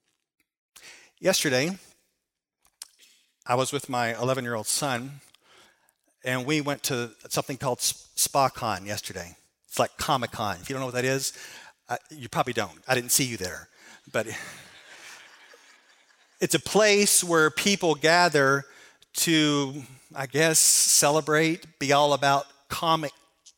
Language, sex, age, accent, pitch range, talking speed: English, male, 40-59, American, 120-175 Hz, 120 wpm